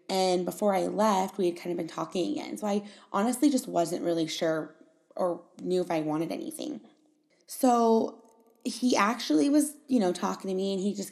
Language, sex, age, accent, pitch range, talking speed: English, female, 20-39, American, 180-245 Hz, 195 wpm